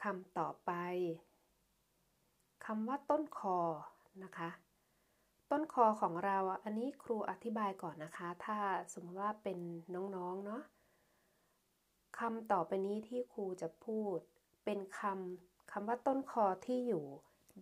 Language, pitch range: Thai, 180-230 Hz